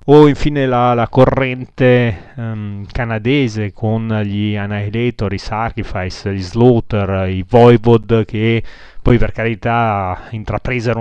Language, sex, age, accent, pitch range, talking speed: Italian, male, 30-49, native, 105-125 Hz, 115 wpm